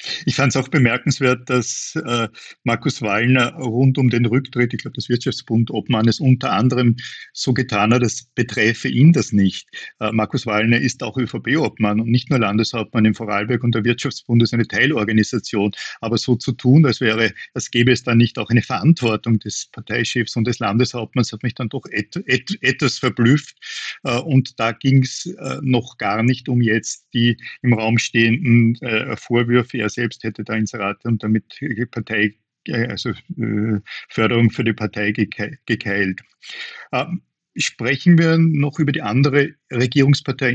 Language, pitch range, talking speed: German, 110-130 Hz, 165 wpm